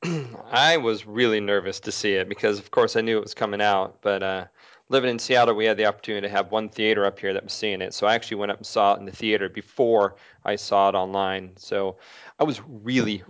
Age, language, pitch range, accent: 30-49, English, 100-130 Hz, American